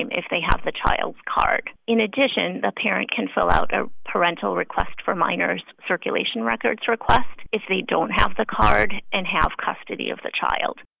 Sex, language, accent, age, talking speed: female, English, American, 30-49, 180 wpm